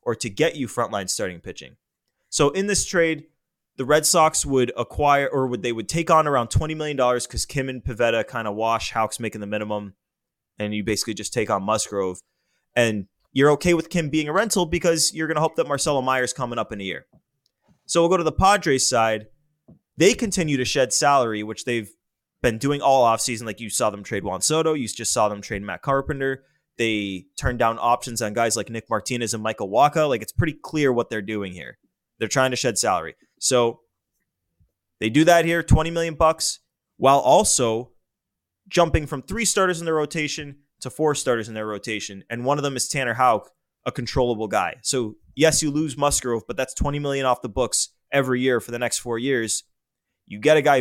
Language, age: English, 20-39